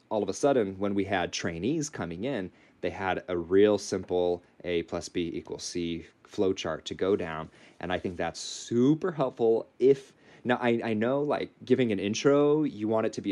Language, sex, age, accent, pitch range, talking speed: English, male, 30-49, American, 90-115 Hz, 205 wpm